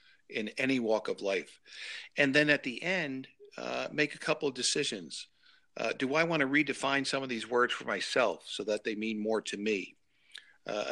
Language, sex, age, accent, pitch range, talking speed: English, male, 50-69, American, 115-155 Hz, 200 wpm